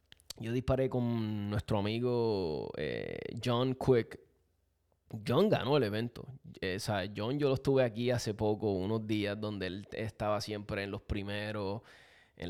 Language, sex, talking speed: Spanish, male, 155 wpm